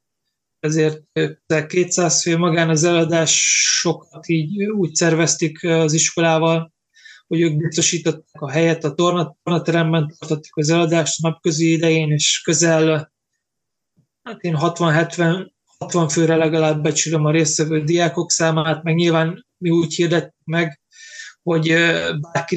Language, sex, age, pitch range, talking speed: Hungarian, male, 20-39, 160-170 Hz, 120 wpm